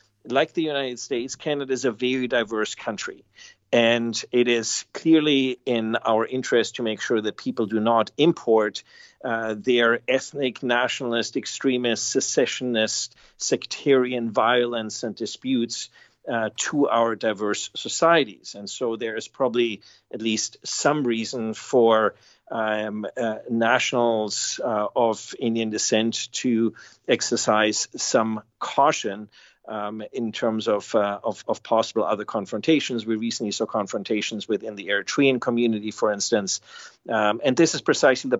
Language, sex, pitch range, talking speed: English, male, 110-125 Hz, 135 wpm